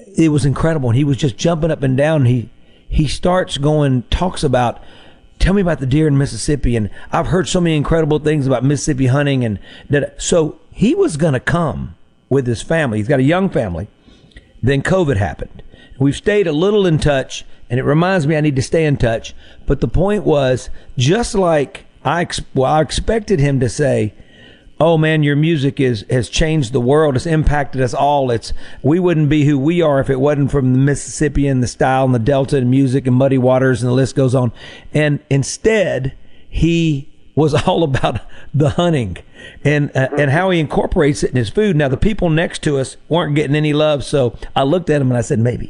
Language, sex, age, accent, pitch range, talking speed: English, male, 50-69, American, 130-160 Hz, 210 wpm